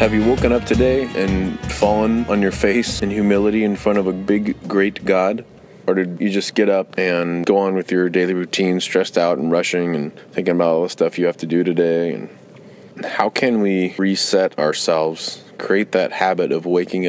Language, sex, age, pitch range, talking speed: English, male, 20-39, 85-100 Hz, 205 wpm